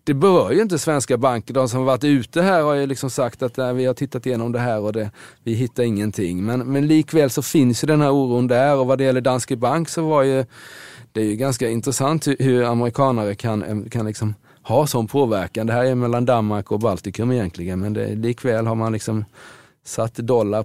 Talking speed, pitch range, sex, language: 225 wpm, 110-135 Hz, male, Swedish